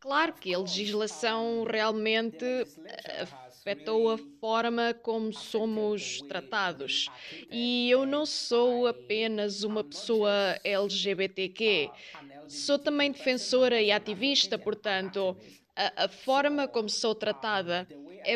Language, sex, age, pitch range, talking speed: Portuguese, female, 20-39, 210-260 Hz, 100 wpm